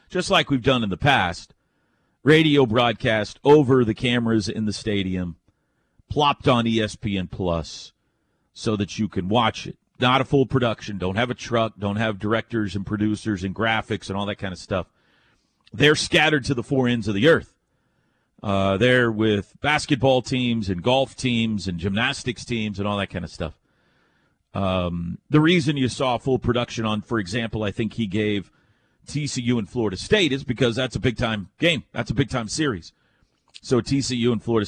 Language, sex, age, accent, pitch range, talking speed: English, male, 40-59, American, 100-130 Hz, 185 wpm